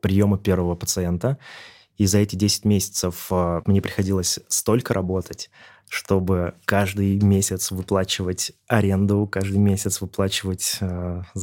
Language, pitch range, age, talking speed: Russian, 90-110 Hz, 20-39, 105 wpm